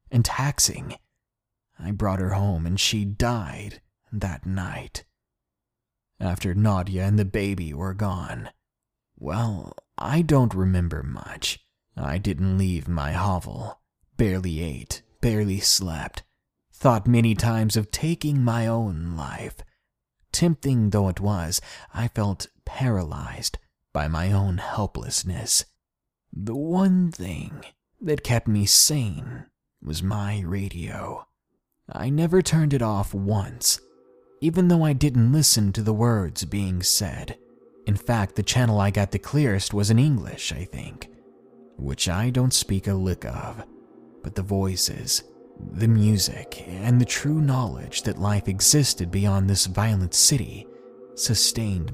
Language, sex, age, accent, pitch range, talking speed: English, male, 30-49, American, 95-120 Hz, 130 wpm